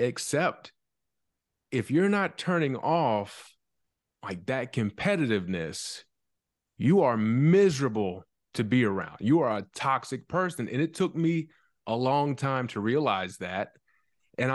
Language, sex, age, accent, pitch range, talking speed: English, male, 30-49, American, 110-145 Hz, 130 wpm